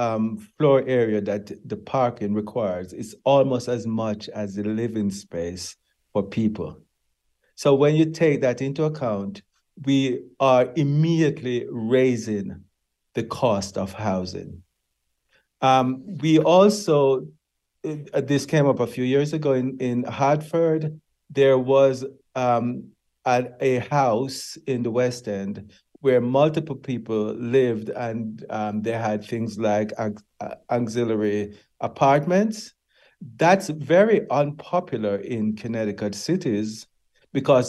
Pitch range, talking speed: 105-135 Hz, 120 wpm